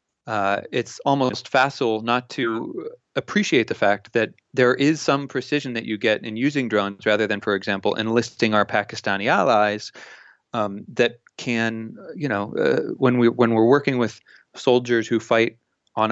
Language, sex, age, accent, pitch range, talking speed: English, male, 30-49, American, 105-135 Hz, 165 wpm